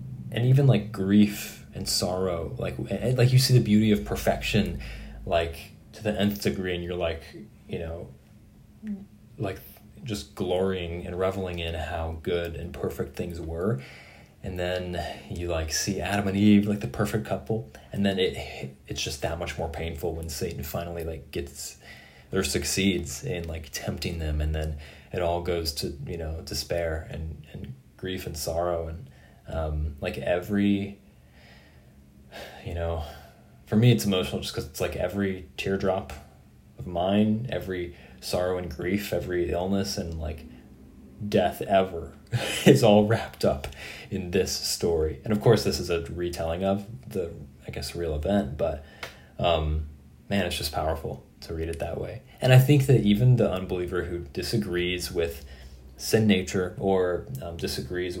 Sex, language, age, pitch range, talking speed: male, English, 20-39, 75-100 Hz, 160 wpm